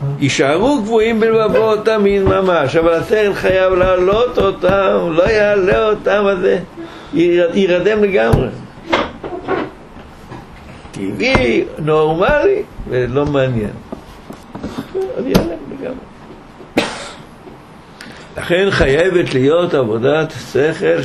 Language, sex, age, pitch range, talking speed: Hebrew, male, 60-79, 120-180 Hz, 85 wpm